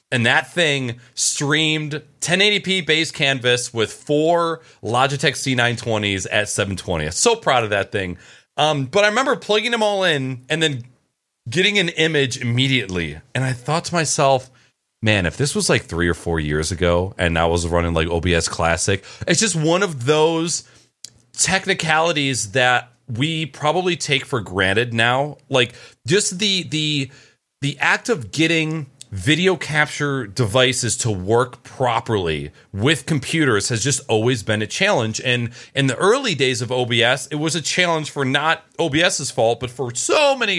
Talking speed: 160 wpm